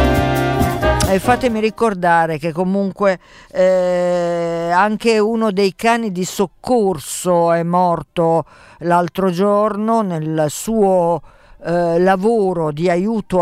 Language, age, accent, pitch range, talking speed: Italian, 50-69, native, 170-220 Hz, 100 wpm